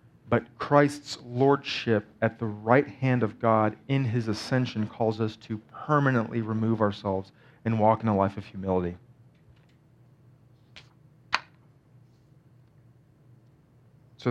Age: 30-49